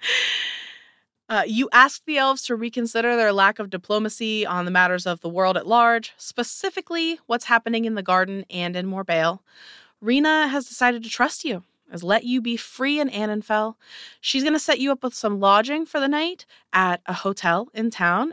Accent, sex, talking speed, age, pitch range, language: American, female, 190 wpm, 20-39, 185-240 Hz, English